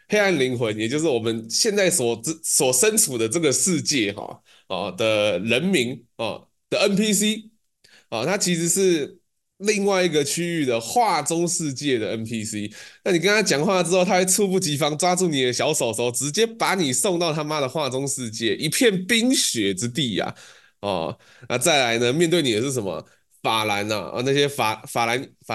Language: Chinese